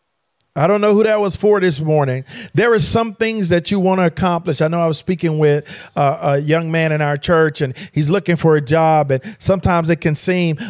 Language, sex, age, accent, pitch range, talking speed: English, male, 40-59, American, 155-215 Hz, 235 wpm